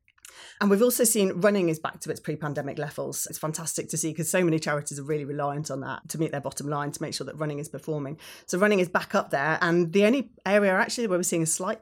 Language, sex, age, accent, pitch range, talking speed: English, female, 30-49, British, 150-180 Hz, 265 wpm